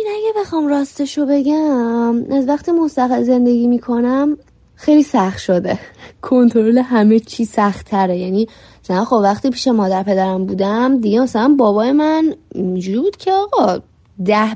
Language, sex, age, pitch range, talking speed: Persian, female, 20-39, 210-280 Hz, 135 wpm